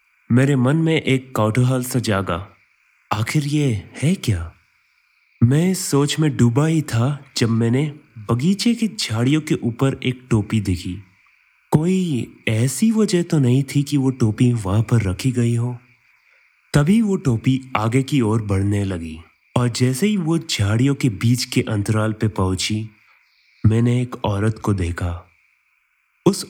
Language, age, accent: Hindi, 30-49, native